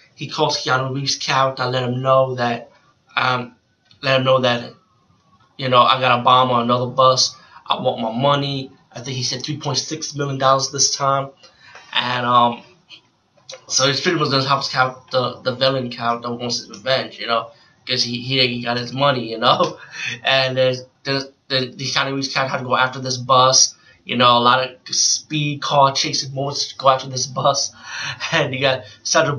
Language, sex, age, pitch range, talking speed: English, male, 20-39, 125-140 Hz, 195 wpm